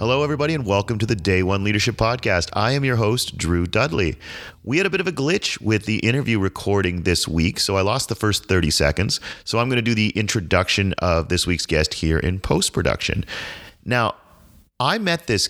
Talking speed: 210 wpm